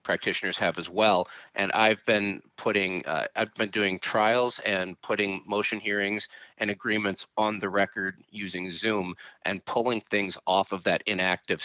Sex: male